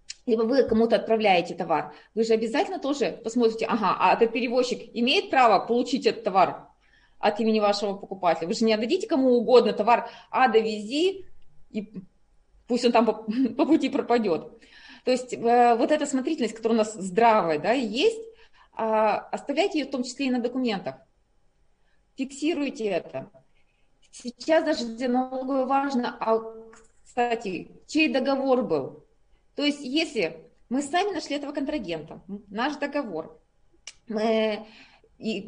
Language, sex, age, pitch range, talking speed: Russian, female, 20-39, 215-270 Hz, 135 wpm